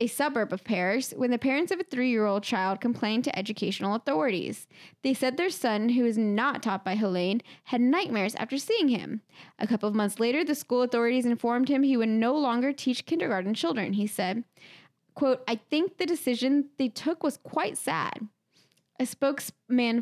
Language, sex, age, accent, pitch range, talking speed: English, female, 10-29, American, 220-280 Hz, 185 wpm